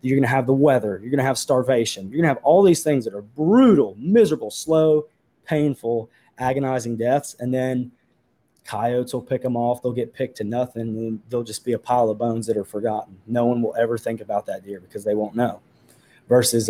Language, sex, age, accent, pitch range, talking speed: English, male, 20-39, American, 110-125 Hz, 210 wpm